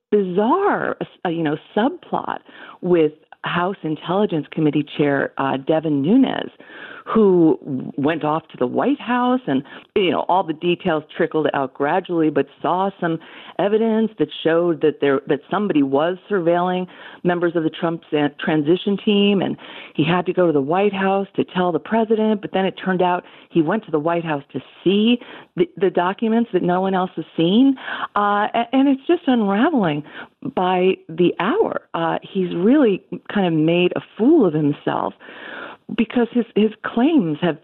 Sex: female